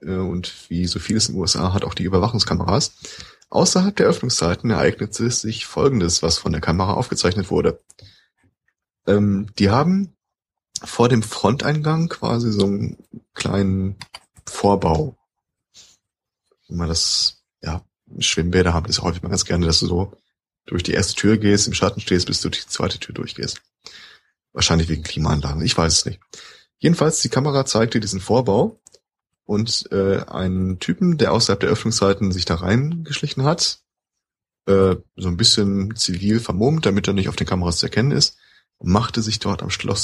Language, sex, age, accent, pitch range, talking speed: German, male, 30-49, German, 95-120 Hz, 160 wpm